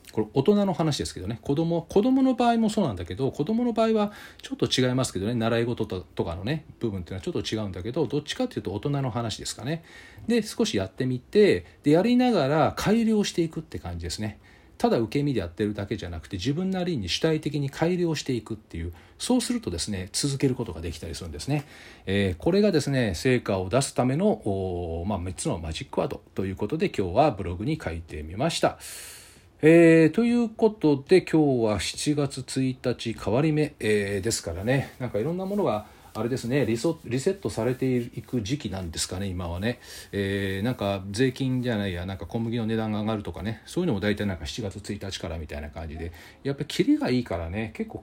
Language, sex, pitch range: Japanese, male, 100-155 Hz